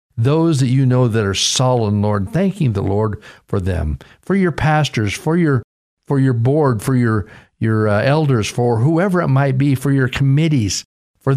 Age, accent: 50-69, American